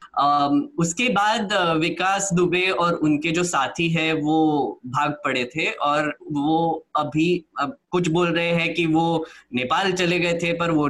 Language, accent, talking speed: Hindi, native, 155 wpm